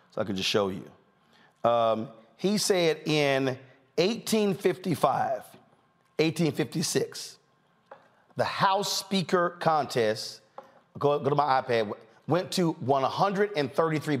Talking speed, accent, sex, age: 95 wpm, American, male, 40-59